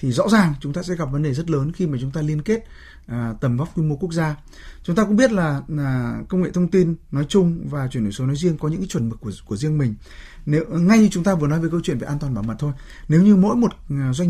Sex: male